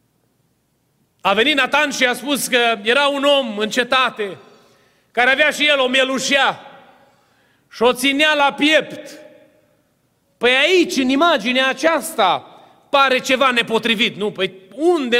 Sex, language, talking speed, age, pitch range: male, Romanian, 135 wpm, 30-49, 245-300 Hz